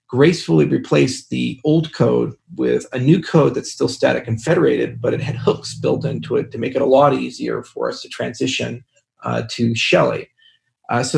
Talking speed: 195 wpm